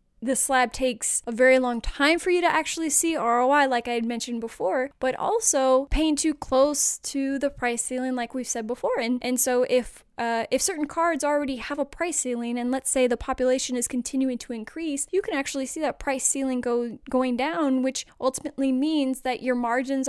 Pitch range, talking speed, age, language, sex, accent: 245-280 Hz, 205 wpm, 10-29, English, female, American